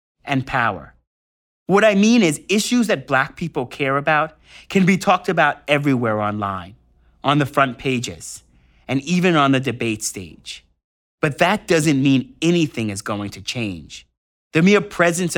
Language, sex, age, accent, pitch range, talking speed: English, male, 30-49, American, 100-155 Hz, 155 wpm